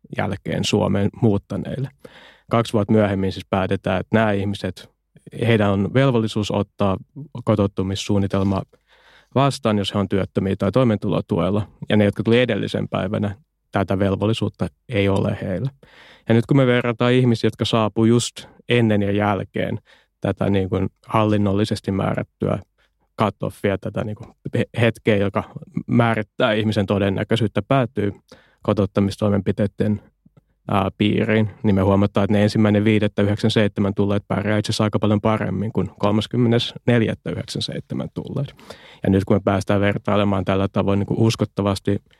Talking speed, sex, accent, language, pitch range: 130 wpm, male, native, Finnish, 100-110 Hz